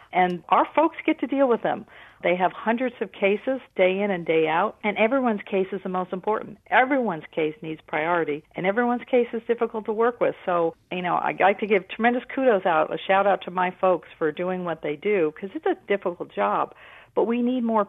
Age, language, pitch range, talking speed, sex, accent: 50-69, English, 165-210 Hz, 220 wpm, female, American